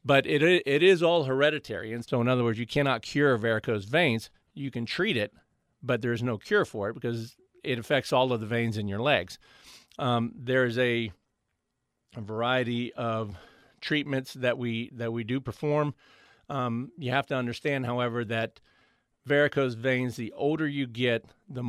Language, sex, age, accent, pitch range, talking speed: English, male, 50-69, American, 115-130 Hz, 175 wpm